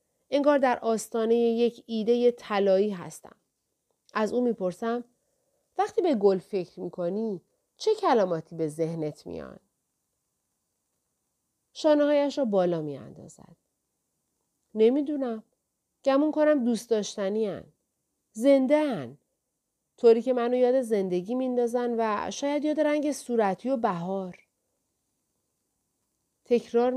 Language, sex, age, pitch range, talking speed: Persian, female, 40-59, 180-255 Hz, 105 wpm